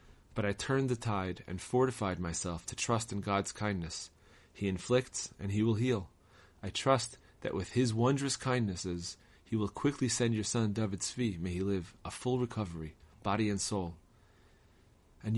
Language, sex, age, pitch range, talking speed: English, male, 30-49, 95-120 Hz, 170 wpm